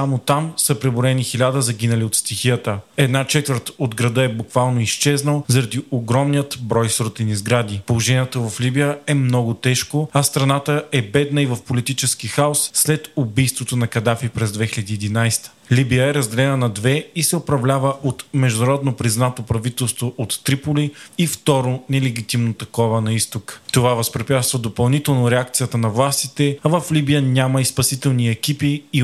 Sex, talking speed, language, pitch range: male, 155 wpm, Bulgarian, 115-140 Hz